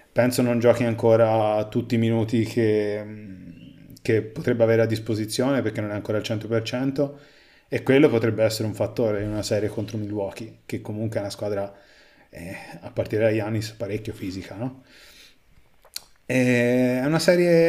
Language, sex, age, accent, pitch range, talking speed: Italian, male, 30-49, native, 110-125 Hz, 155 wpm